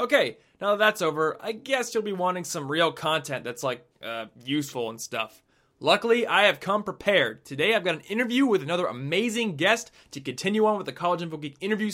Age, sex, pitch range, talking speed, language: 20-39, male, 135-190 Hz, 210 wpm, English